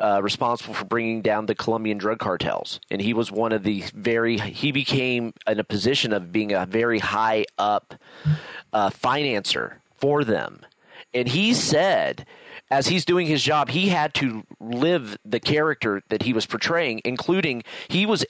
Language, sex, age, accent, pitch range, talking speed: English, male, 30-49, American, 115-160 Hz, 170 wpm